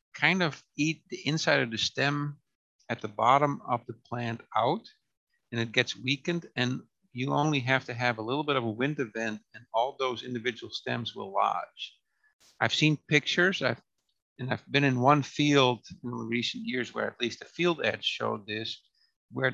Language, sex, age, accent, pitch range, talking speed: English, male, 50-69, American, 115-145 Hz, 185 wpm